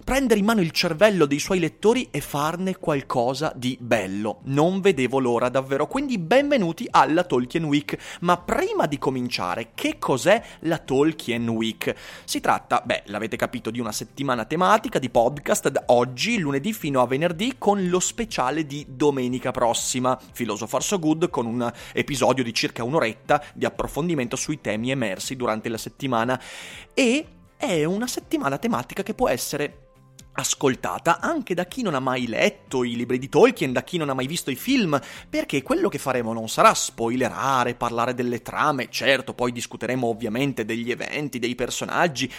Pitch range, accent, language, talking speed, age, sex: 125-185 Hz, native, Italian, 165 wpm, 30-49, male